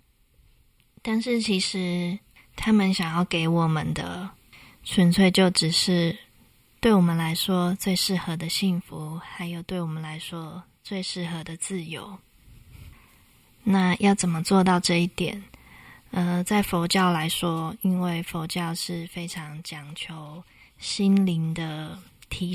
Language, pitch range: Chinese, 165-190 Hz